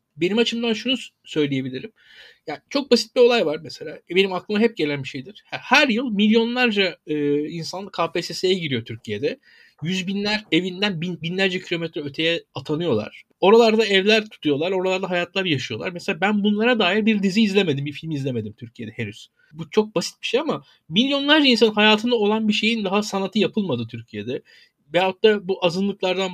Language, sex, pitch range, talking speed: Turkish, male, 160-220 Hz, 155 wpm